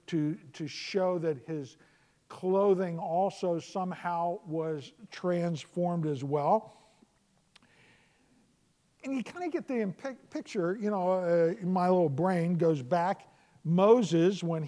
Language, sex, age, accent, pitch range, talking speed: English, male, 50-69, American, 160-210 Hz, 125 wpm